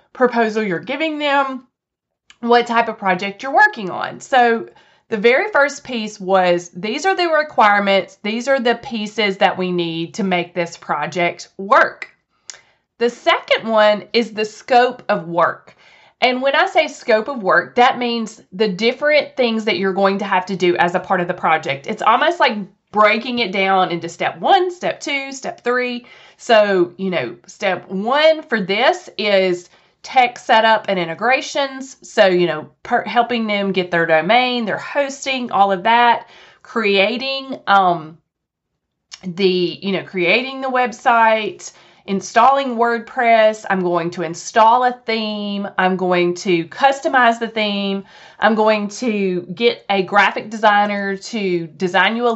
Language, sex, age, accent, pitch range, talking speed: English, female, 30-49, American, 190-250 Hz, 155 wpm